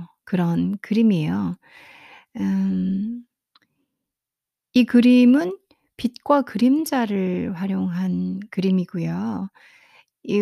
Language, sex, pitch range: Korean, female, 180-230 Hz